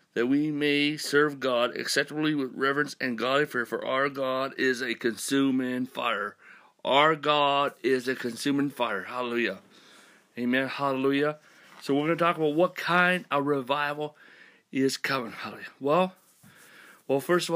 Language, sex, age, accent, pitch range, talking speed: English, male, 40-59, American, 130-155 Hz, 150 wpm